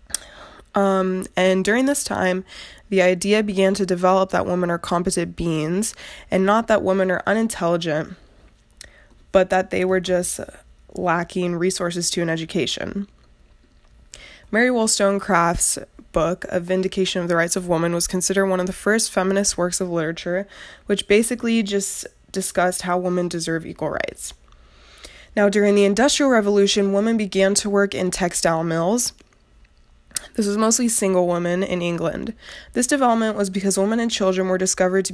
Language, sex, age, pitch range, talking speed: English, female, 20-39, 175-200 Hz, 150 wpm